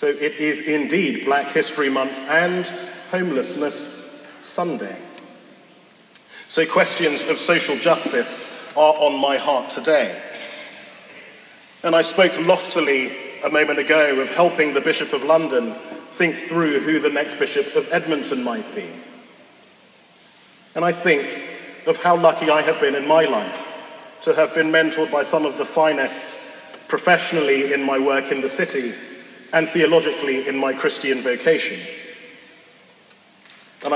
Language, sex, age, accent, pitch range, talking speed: English, male, 40-59, British, 145-170 Hz, 140 wpm